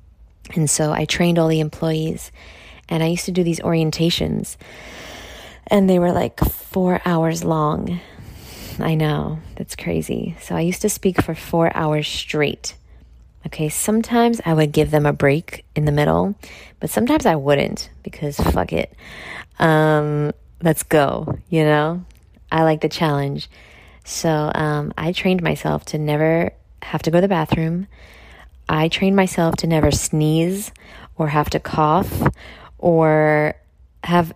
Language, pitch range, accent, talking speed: English, 145-170 Hz, American, 150 wpm